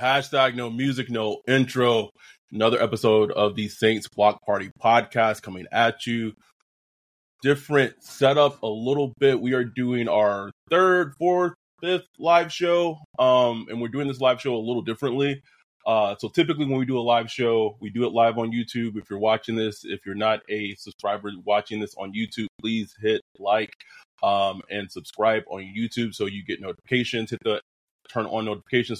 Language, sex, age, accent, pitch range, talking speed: English, male, 20-39, American, 110-130 Hz, 175 wpm